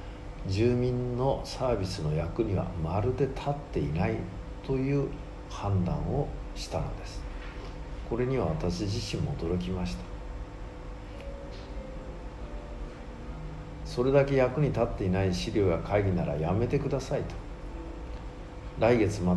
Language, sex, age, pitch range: Japanese, male, 60-79, 85-115 Hz